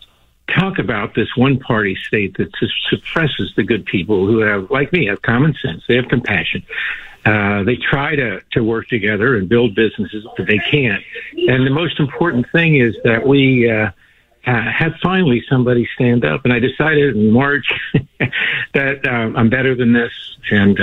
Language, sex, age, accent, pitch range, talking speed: English, male, 60-79, American, 105-135 Hz, 175 wpm